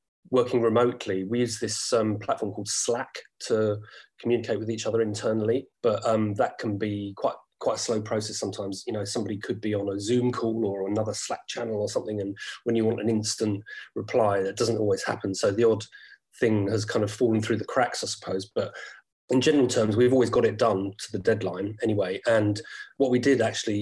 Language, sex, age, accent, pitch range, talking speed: English, male, 30-49, British, 100-115 Hz, 210 wpm